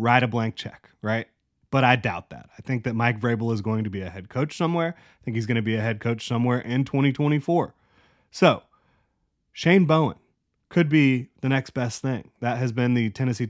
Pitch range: 115-140 Hz